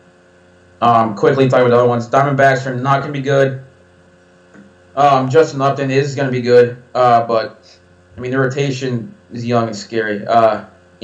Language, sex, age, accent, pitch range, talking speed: English, male, 20-39, American, 100-120 Hz, 175 wpm